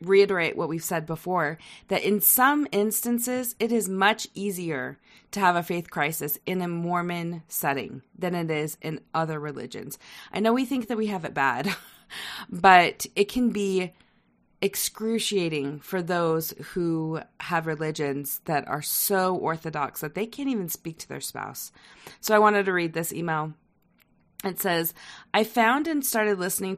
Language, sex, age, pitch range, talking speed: English, female, 30-49, 160-205 Hz, 165 wpm